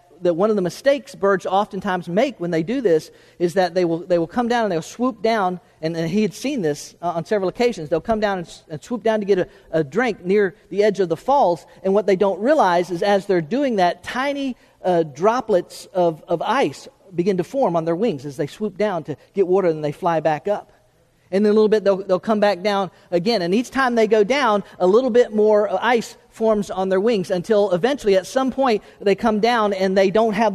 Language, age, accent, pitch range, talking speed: English, 40-59, American, 175-225 Hz, 240 wpm